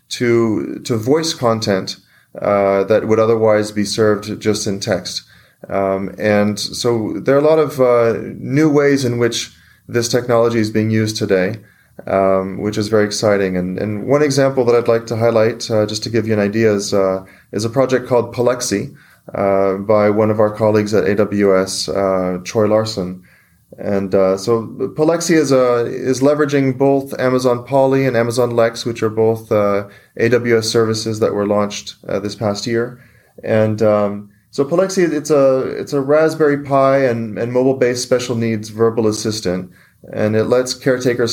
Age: 30-49